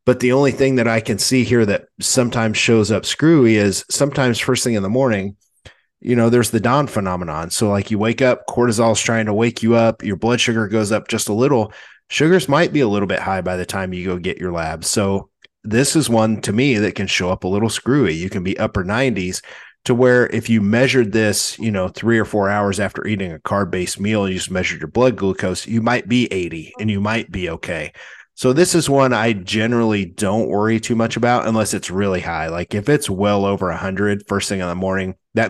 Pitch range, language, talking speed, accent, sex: 95-120 Hz, English, 235 wpm, American, male